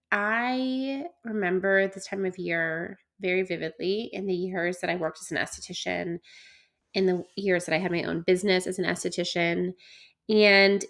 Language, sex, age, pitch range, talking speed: English, female, 20-39, 185-235 Hz, 165 wpm